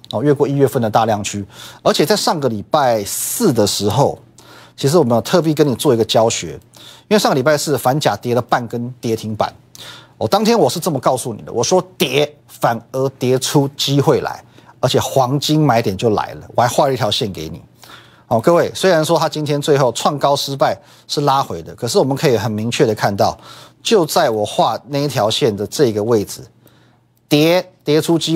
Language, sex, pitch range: Chinese, male, 115-150 Hz